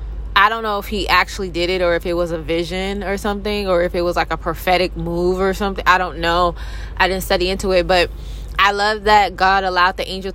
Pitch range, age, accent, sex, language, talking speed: 180-215 Hz, 20-39, American, female, English, 245 wpm